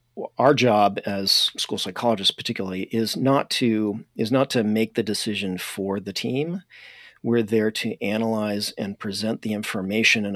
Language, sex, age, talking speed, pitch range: English, male, 40-59, 155 wpm, 95-115 Hz